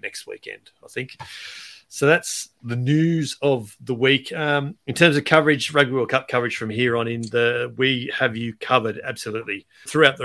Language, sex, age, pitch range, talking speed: English, male, 40-59, 110-145 Hz, 185 wpm